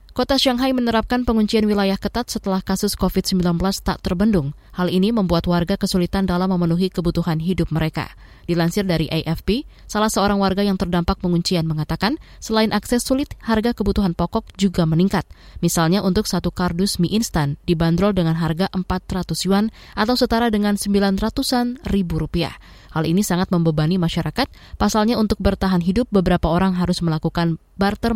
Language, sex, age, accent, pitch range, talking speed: Indonesian, female, 20-39, native, 170-215 Hz, 150 wpm